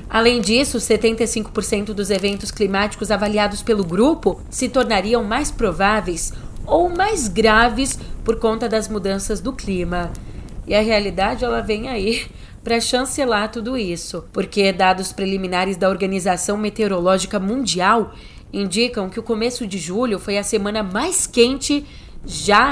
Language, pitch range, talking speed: Portuguese, 190-235 Hz, 130 wpm